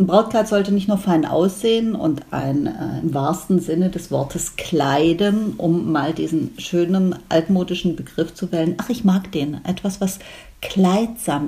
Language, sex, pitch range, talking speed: German, female, 165-215 Hz, 160 wpm